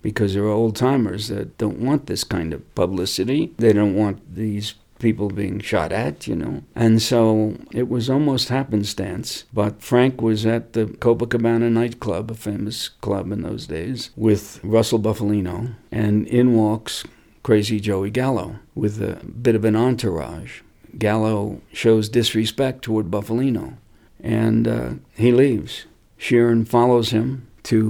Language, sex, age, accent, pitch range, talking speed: English, male, 60-79, American, 105-120 Hz, 145 wpm